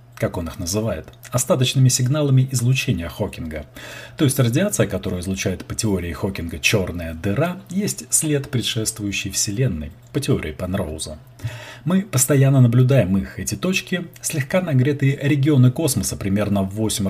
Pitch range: 100-130 Hz